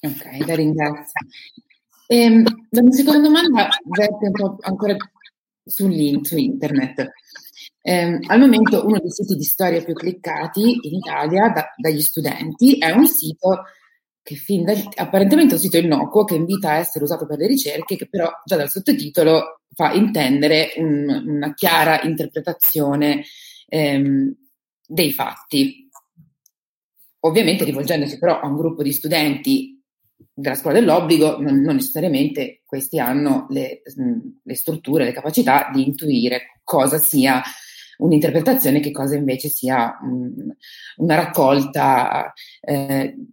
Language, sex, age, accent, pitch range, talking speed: Italian, female, 30-49, native, 150-215 Hz, 130 wpm